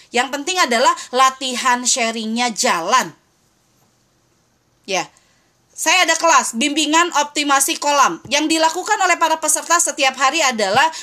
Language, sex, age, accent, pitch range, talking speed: Indonesian, female, 20-39, native, 250-335 Hz, 115 wpm